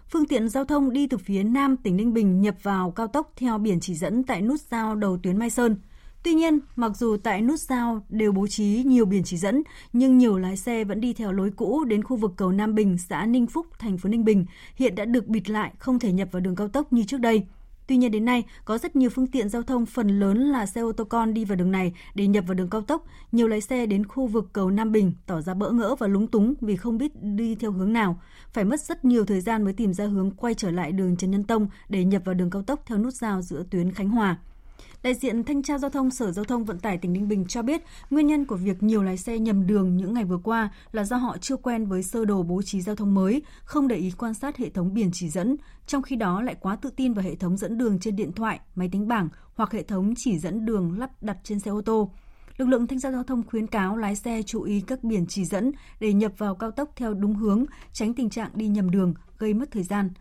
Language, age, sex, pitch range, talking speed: Vietnamese, 20-39, female, 195-245 Hz, 275 wpm